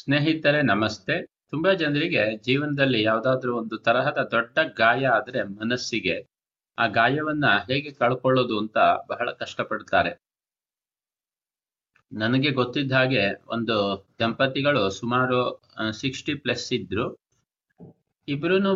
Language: Kannada